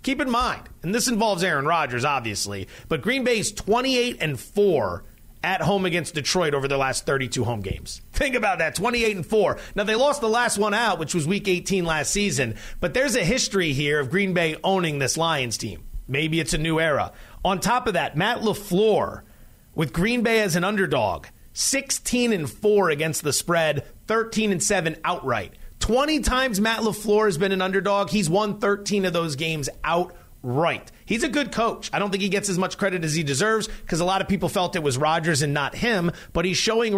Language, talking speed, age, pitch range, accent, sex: English, 210 wpm, 30-49, 155-215 Hz, American, male